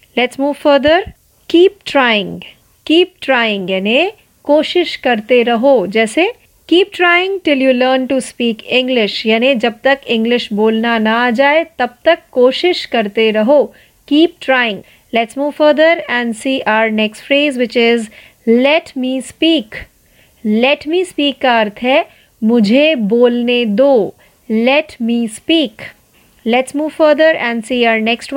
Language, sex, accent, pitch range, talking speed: Marathi, female, native, 235-300 Hz, 140 wpm